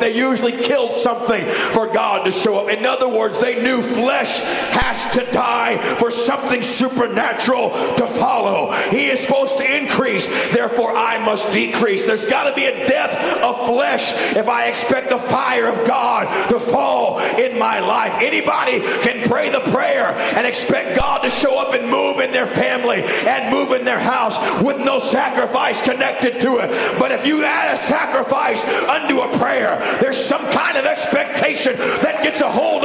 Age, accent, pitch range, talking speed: 50-69, American, 235-305 Hz, 175 wpm